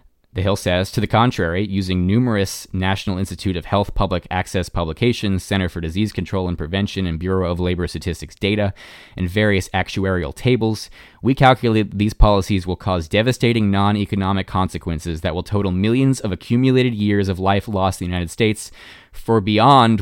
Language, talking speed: English, 170 wpm